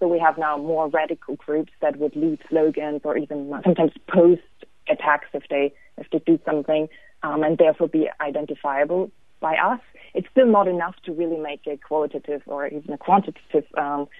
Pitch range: 150-180 Hz